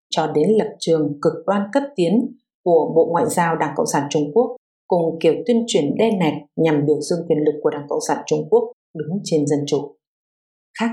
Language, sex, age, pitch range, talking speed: English, female, 50-69, 155-225 Hz, 215 wpm